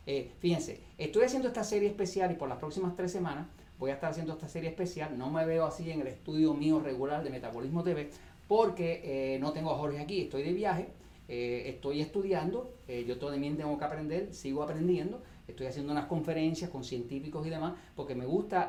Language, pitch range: Spanish, 140-185 Hz